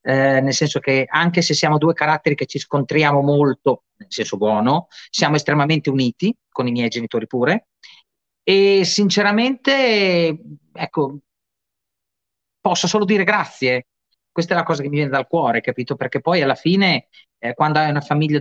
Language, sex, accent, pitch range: Italian, male, native, 130-170 Hz